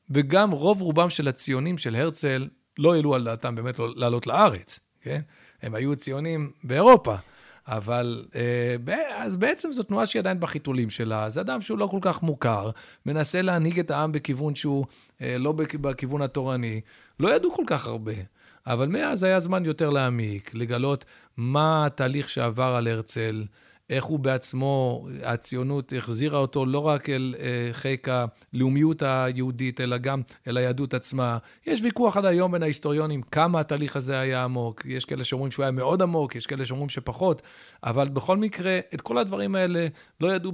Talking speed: 160 wpm